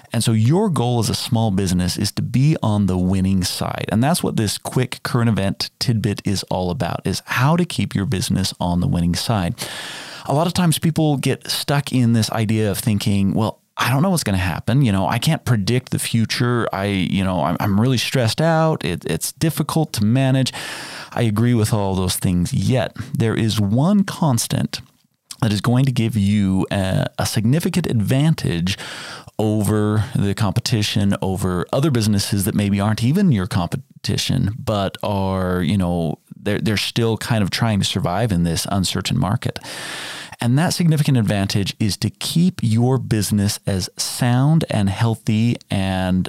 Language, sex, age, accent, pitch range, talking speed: English, male, 30-49, American, 100-130 Hz, 180 wpm